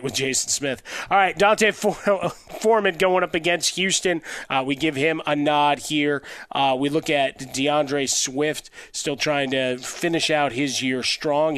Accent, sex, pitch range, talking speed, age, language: American, male, 130-150 Hz, 165 wpm, 30-49, English